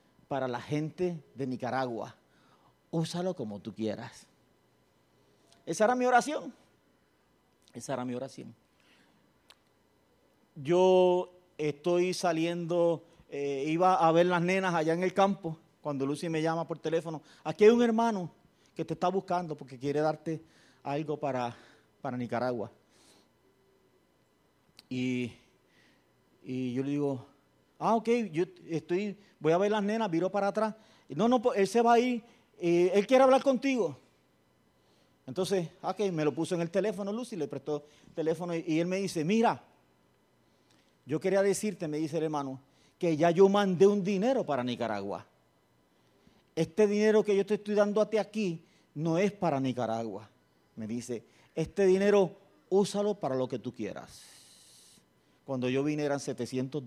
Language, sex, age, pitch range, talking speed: English, male, 40-59, 135-195 Hz, 150 wpm